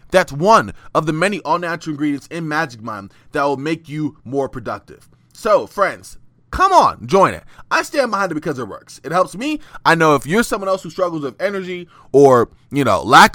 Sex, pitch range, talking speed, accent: male, 145-210 Hz, 205 wpm, American